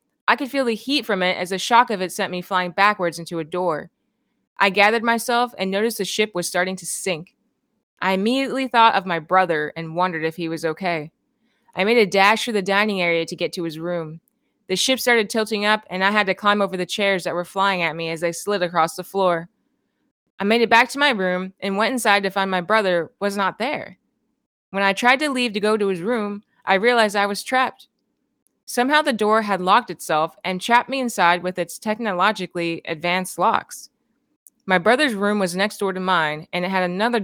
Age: 20-39